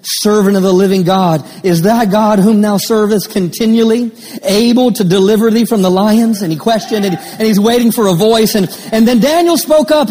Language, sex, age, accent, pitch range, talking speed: English, male, 40-59, American, 190-250 Hz, 215 wpm